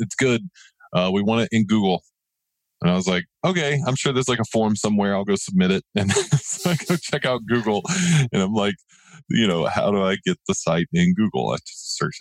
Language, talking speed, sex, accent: English, 230 wpm, male, American